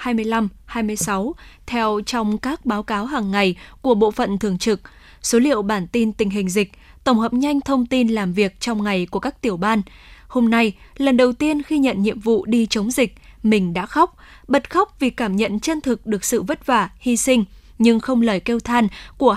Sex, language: female, Vietnamese